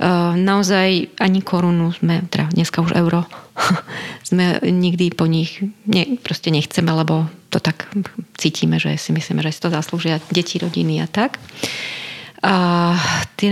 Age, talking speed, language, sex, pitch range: 30-49, 140 wpm, Slovak, female, 175-195 Hz